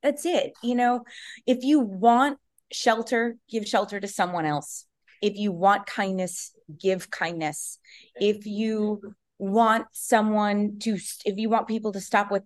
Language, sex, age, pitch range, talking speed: English, female, 20-39, 185-230 Hz, 150 wpm